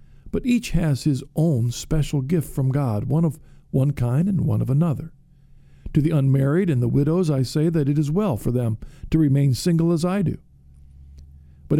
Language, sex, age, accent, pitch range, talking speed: English, male, 50-69, American, 135-160 Hz, 195 wpm